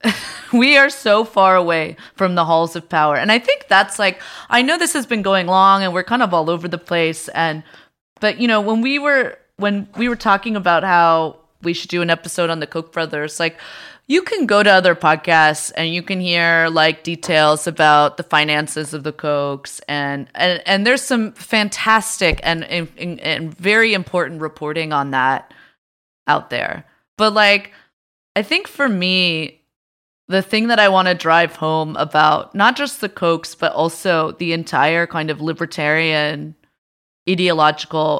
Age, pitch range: 20-39, 155-200 Hz